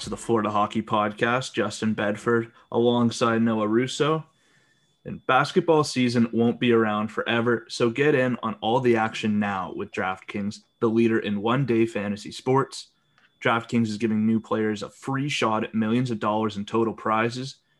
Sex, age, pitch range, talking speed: male, 20-39, 110-125 Hz, 160 wpm